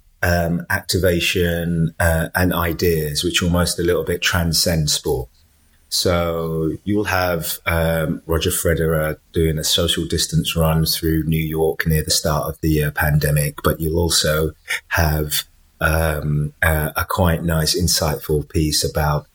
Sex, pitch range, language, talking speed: male, 75-85 Hz, English, 135 wpm